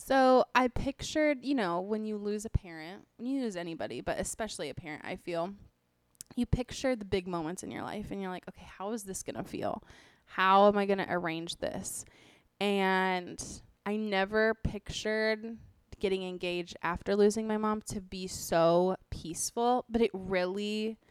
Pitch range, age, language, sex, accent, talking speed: 180-215 Hz, 20-39, English, female, American, 175 wpm